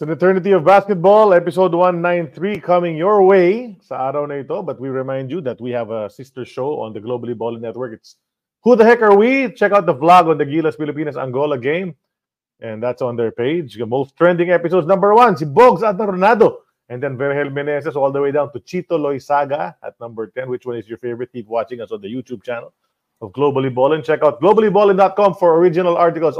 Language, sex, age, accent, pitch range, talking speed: English, male, 30-49, Filipino, 135-195 Hz, 200 wpm